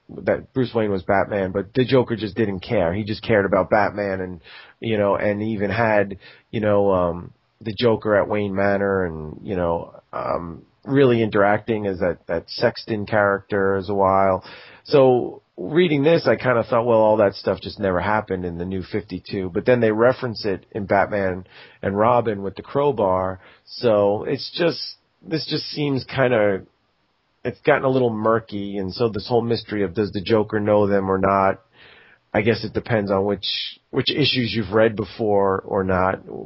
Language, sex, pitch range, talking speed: English, male, 95-115 Hz, 185 wpm